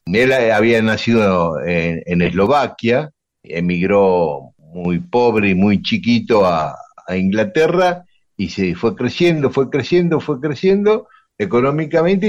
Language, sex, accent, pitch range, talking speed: Spanish, male, Argentinian, 95-150 Hz, 115 wpm